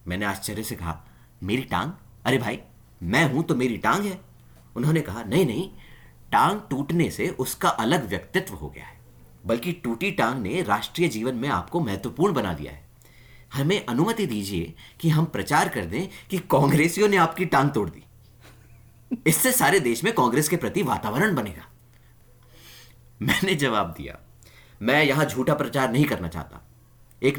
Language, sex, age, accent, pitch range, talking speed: Hindi, male, 30-49, native, 110-145 Hz, 160 wpm